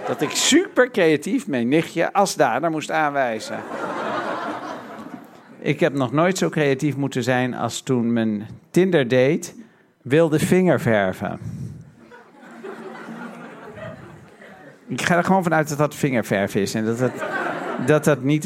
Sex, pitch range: male, 125-170 Hz